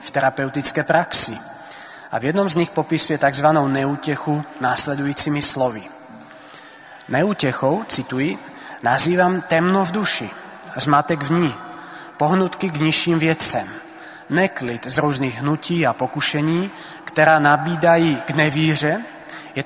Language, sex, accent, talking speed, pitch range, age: Czech, male, native, 110 wpm, 130-155 Hz, 30-49